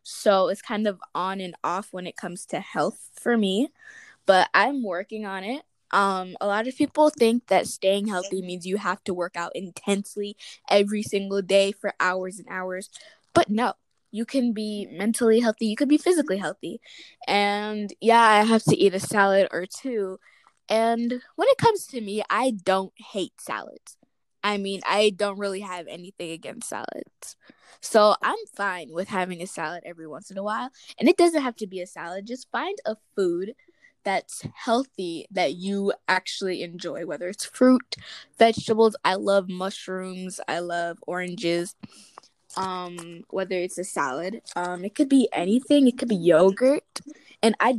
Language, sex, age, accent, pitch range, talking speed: English, female, 10-29, American, 185-240 Hz, 175 wpm